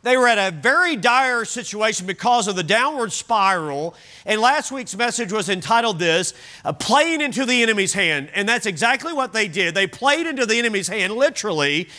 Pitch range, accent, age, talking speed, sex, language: 200-255 Hz, American, 40-59, 185 wpm, male, English